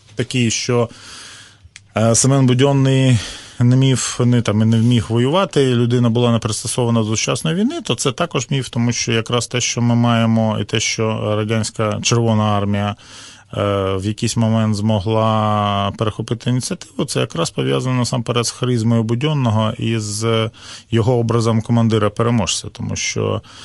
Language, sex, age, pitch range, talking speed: Ukrainian, male, 20-39, 105-125 Hz, 135 wpm